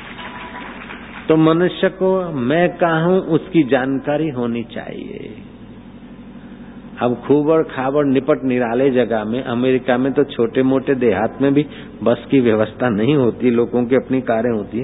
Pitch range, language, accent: 125-165 Hz, Hindi, native